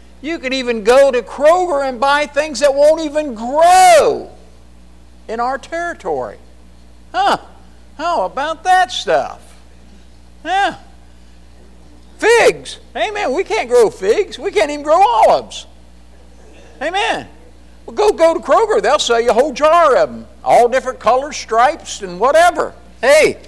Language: English